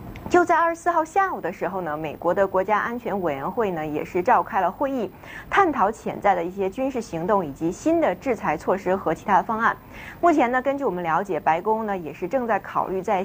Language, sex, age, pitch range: Chinese, female, 30-49, 180-275 Hz